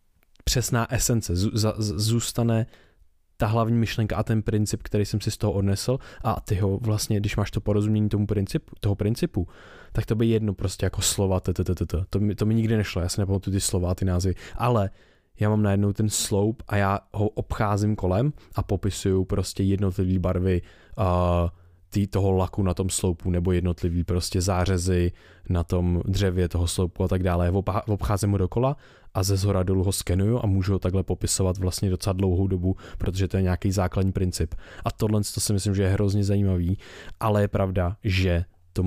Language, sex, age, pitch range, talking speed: Czech, male, 20-39, 90-105 Hz, 185 wpm